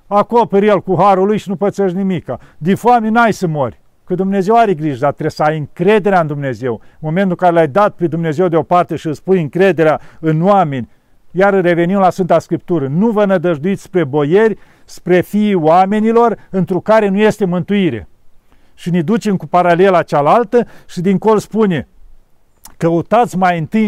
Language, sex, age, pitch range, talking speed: Romanian, male, 50-69, 160-200 Hz, 185 wpm